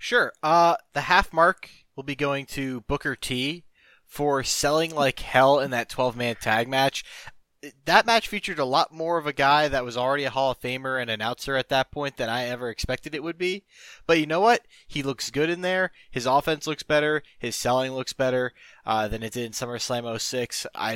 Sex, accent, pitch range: male, American, 115-140 Hz